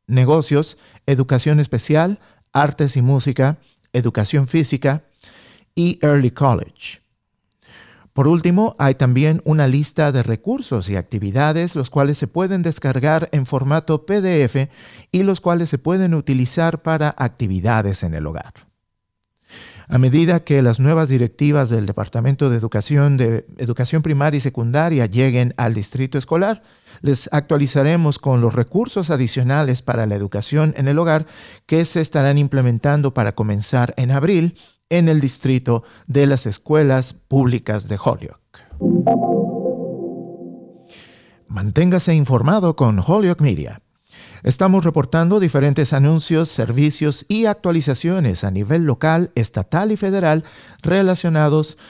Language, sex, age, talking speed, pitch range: English, male, 50-69, 125 wpm, 125-160 Hz